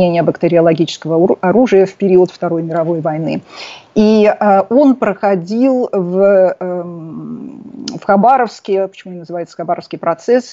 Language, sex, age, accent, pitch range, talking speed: Russian, female, 30-49, native, 170-205 Hz, 115 wpm